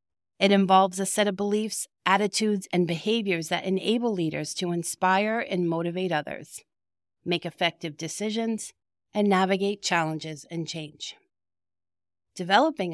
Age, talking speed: 40-59, 120 wpm